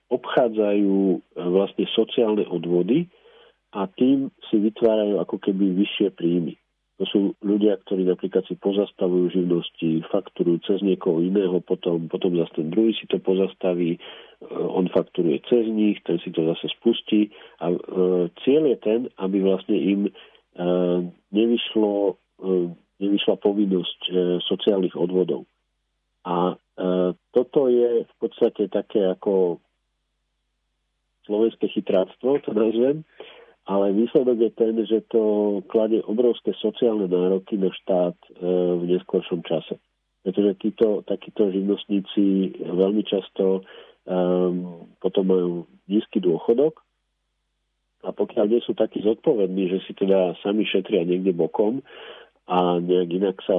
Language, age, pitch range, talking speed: Slovak, 50-69, 90-105 Hz, 120 wpm